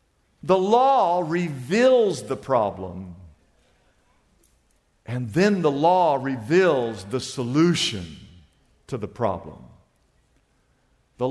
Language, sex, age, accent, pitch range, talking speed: English, male, 50-69, American, 115-155 Hz, 85 wpm